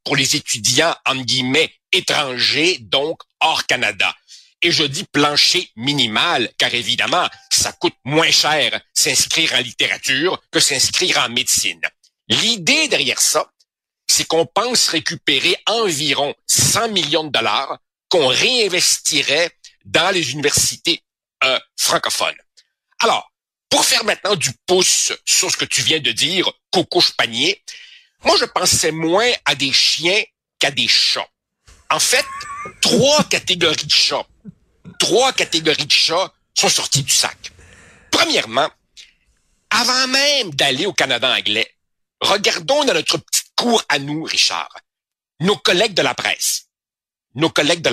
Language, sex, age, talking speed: French, male, 60-79, 135 wpm